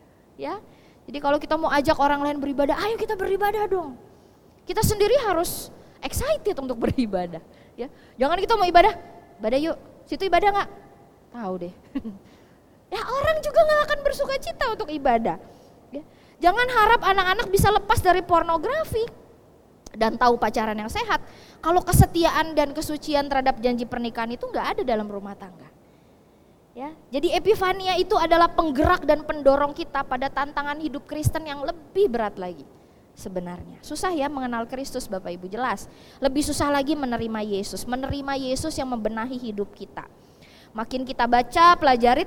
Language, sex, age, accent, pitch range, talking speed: Indonesian, female, 20-39, native, 235-335 Hz, 150 wpm